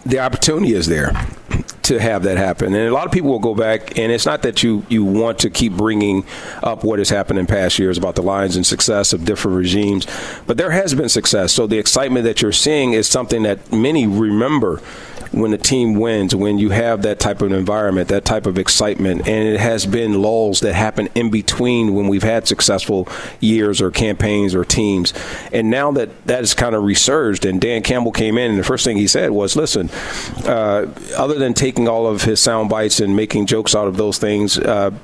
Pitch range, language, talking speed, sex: 100-115 Hz, English, 220 wpm, male